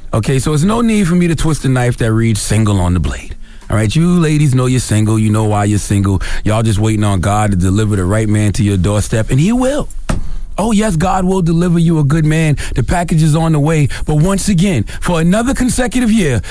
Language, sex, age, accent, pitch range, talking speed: English, male, 30-49, American, 105-170 Hz, 245 wpm